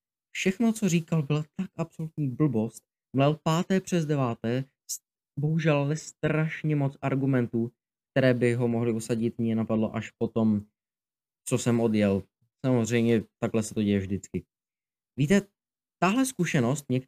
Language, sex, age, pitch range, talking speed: Czech, male, 20-39, 115-150 Hz, 135 wpm